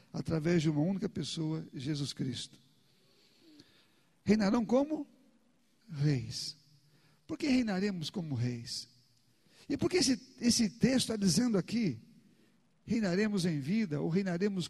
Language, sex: Portuguese, male